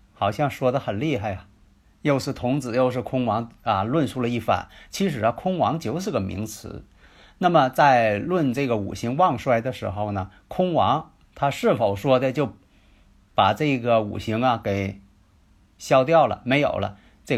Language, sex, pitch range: Chinese, male, 100-145 Hz